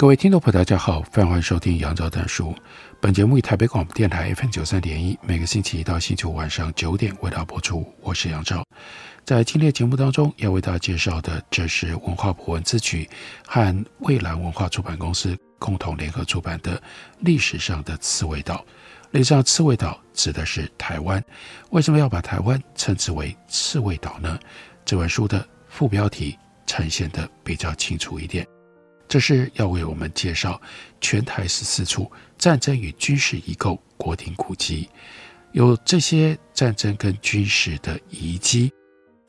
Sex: male